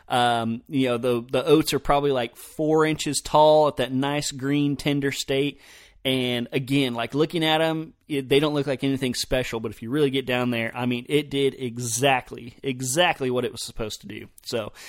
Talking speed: 200 wpm